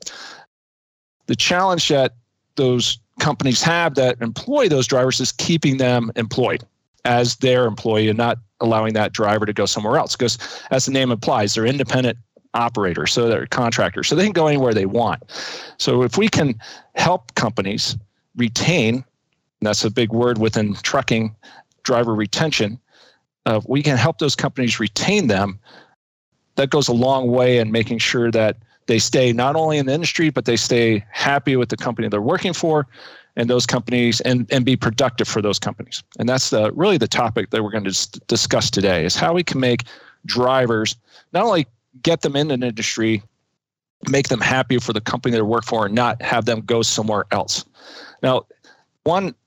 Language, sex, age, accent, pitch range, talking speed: English, male, 40-59, American, 110-135 Hz, 180 wpm